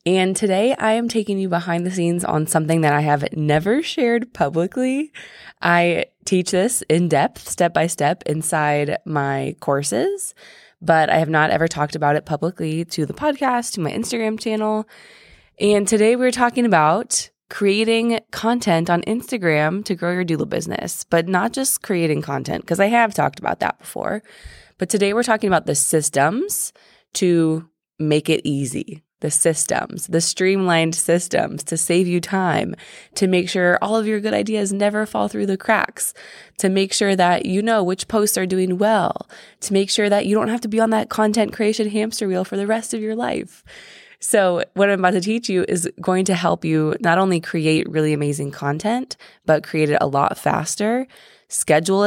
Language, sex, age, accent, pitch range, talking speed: English, female, 20-39, American, 160-220 Hz, 180 wpm